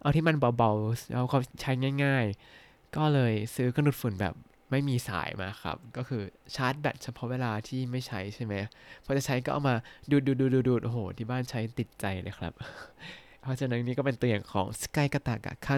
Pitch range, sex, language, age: 110-135 Hz, male, Thai, 20-39